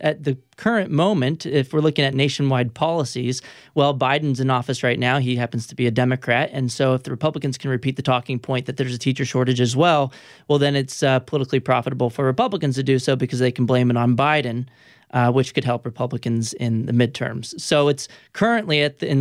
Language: English